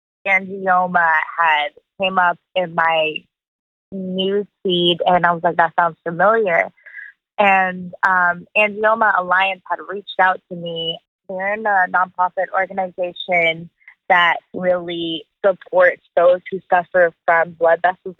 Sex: female